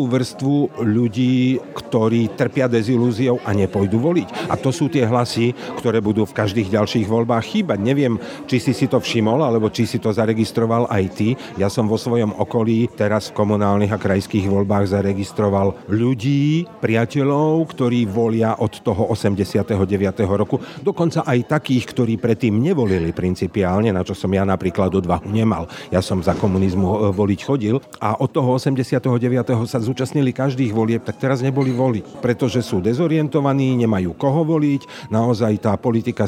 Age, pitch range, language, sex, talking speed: 50-69, 100-125 Hz, Slovak, male, 155 wpm